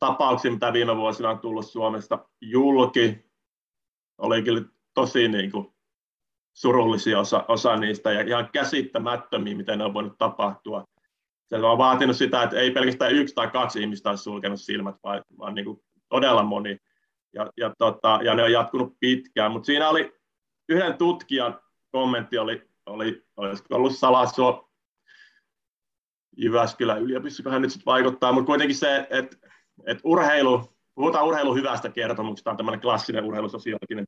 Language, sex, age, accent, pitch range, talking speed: Finnish, male, 30-49, native, 110-130 Hz, 150 wpm